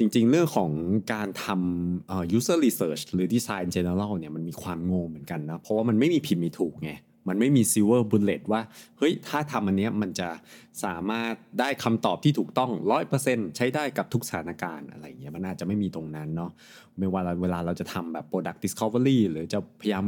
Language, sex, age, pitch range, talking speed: English, male, 20-39, 90-115 Hz, 45 wpm